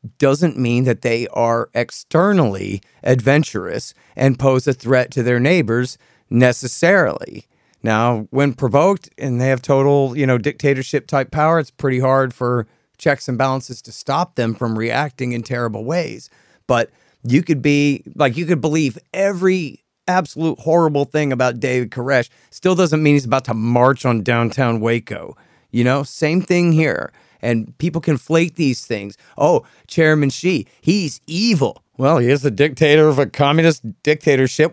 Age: 40-59